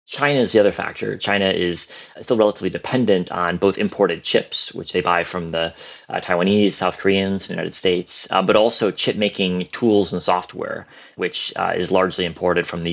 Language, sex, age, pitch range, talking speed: English, male, 30-49, 85-100 Hz, 185 wpm